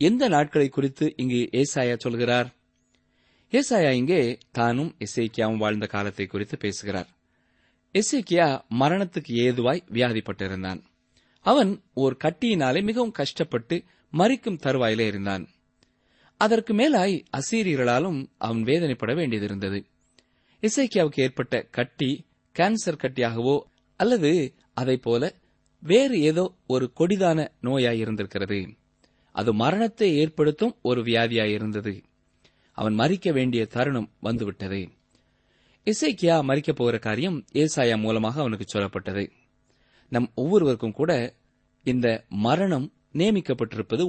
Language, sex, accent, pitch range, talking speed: Tamil, male, native, 110-155 Hz, 90 wpm